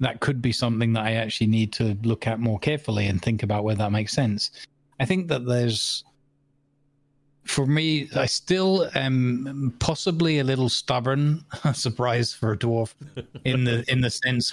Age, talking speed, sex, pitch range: 20-39, 175 wpm, male, 110-135 Hz